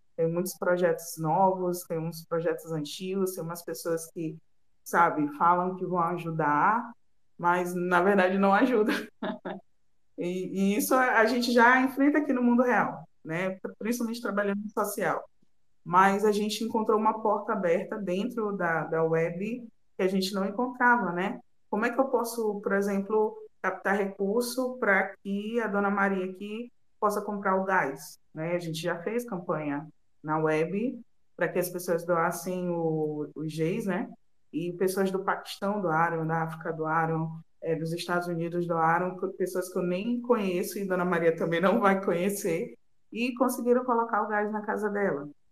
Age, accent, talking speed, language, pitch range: 20-39, Brazilian, 160 wpm, Portuguese, 170-215 Hz